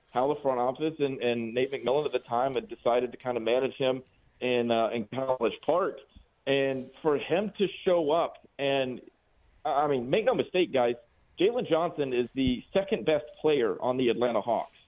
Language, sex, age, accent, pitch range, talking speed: English, male, 40-59, American, 125-165 Hz, 190 wpm